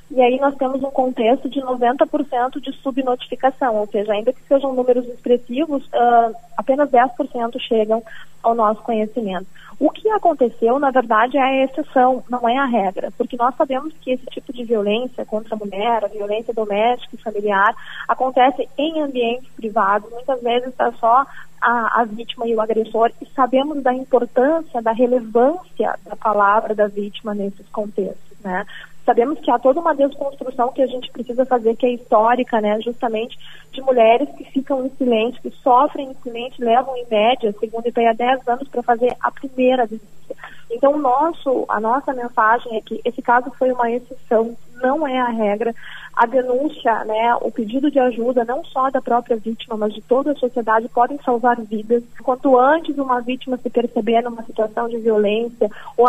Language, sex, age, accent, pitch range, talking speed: Portuguese, female, 20-39, Brazilian, 230-260 Hz, 180 wpm